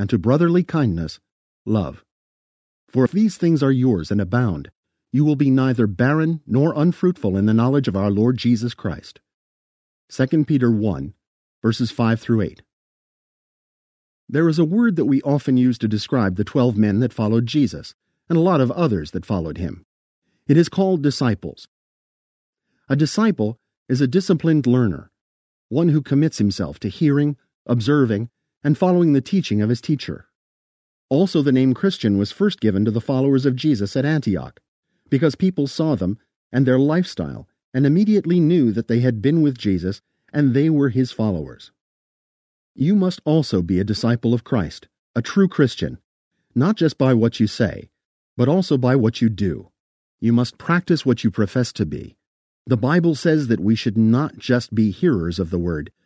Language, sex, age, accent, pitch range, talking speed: English, male, 50-69, American, 105-150 Hz, 175 wpm